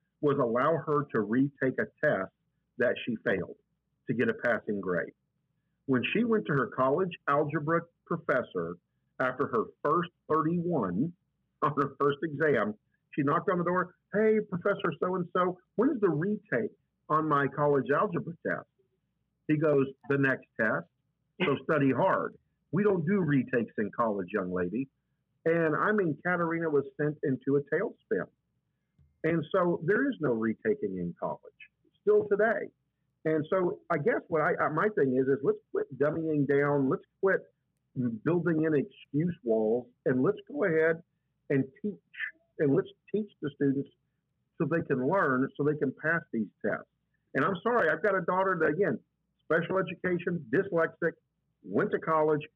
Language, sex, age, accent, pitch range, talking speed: English, male, 50-69, American, 140-180 Hz, 160 wpm